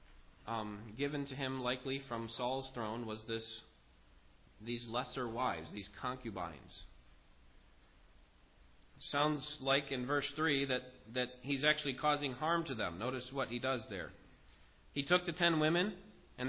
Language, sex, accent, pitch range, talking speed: English, male, American, 105-150 Hz, 140 wpm